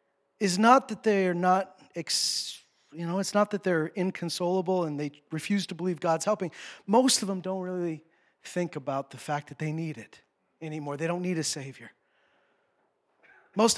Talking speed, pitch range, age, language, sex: 175 wpm, 145-180 Hz, 40-59, English, male